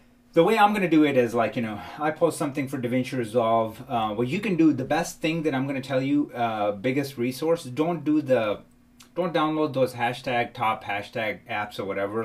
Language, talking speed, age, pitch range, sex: English, 225 wpm, 30-49, 115-140 Hz, male